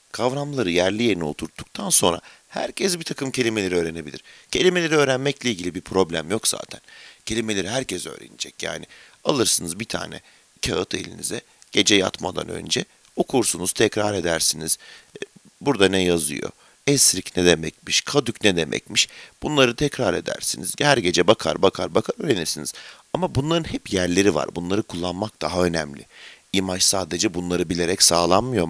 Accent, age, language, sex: native, 50-69, Turkish, male